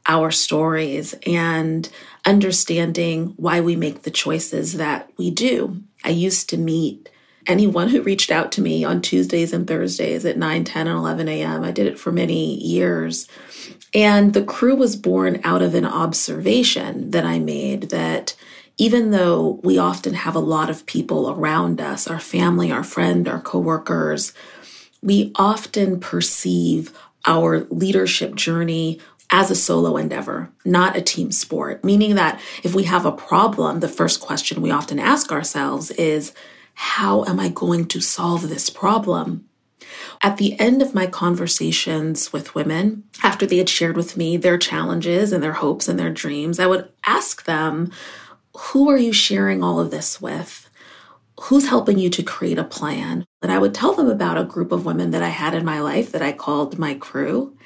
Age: 30-49